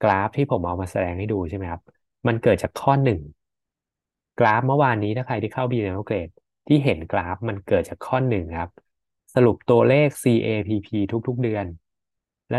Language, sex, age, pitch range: Thai, male, 20-39, 95-125 Hz